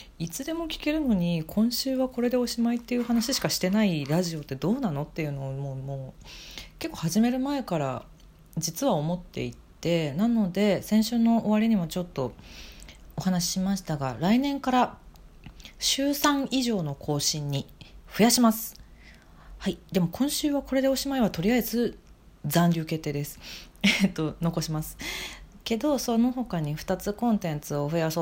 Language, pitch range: Japanese, 150-230 Hz